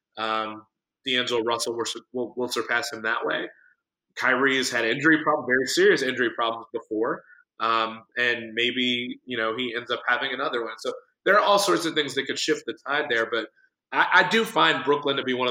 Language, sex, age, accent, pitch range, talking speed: English, male, 20-39, American, 115-140 Hz, 200 wpm